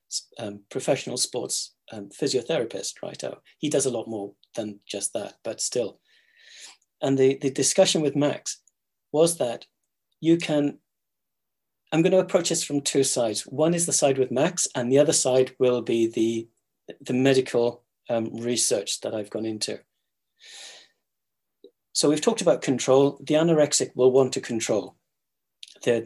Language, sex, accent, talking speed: English, male, British, 160 wpm